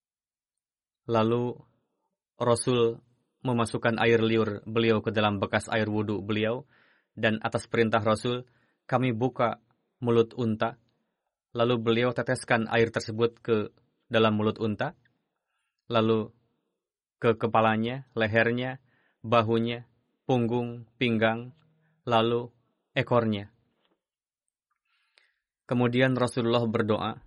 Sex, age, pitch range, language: male, 20-39, 110-120 Hz, Indonesian